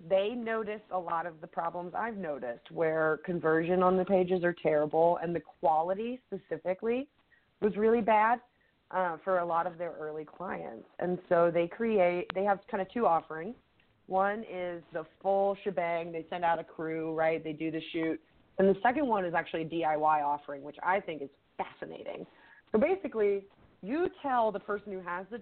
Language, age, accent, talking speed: English, 30-49, American, 185 wpm